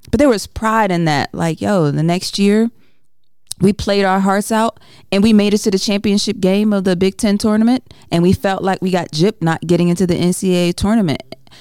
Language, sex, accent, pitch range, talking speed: English, female, American, 145-185 Hz, 215 wpm